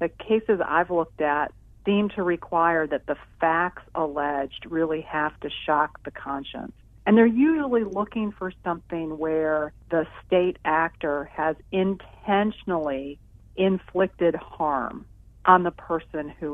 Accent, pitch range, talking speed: American, 150-185 Hz, 130 wpm